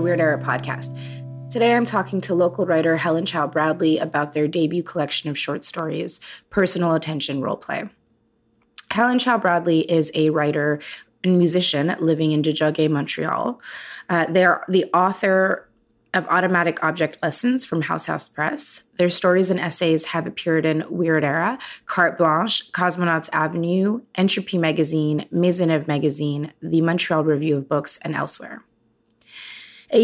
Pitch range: 155-185 Hz